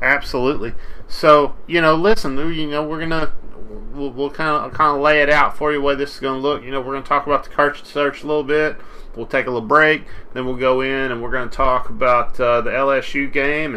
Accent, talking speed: American, 235 wpm